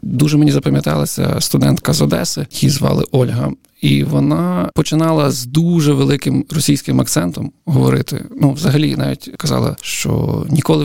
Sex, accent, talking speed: male, native, 135 wpm